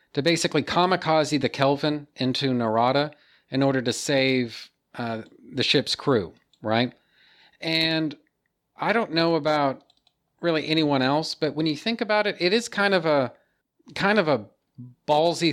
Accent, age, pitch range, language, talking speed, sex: American, 40-59, 125-150 Hz, English, 150 wpm, male